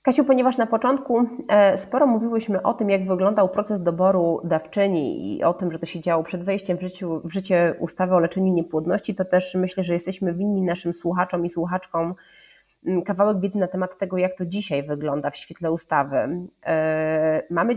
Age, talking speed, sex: 30-49, 175 wpm, female